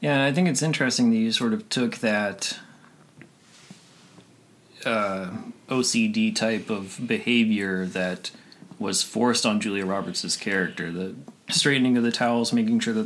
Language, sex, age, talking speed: English, male, 30-49, 145 wpm